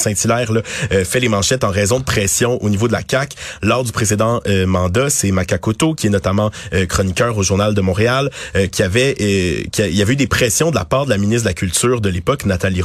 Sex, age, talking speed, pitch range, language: male, 30-49, 255 wpm, 100-125 Hz, French